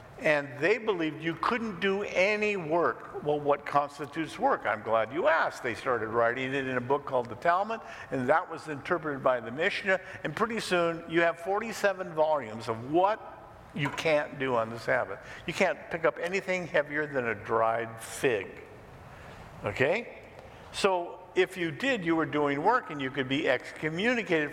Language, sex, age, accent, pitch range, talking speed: English, male, 50-69, American, 145-200 Hz, 175 wpm